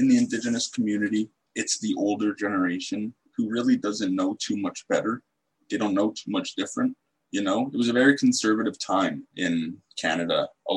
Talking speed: 180 wpm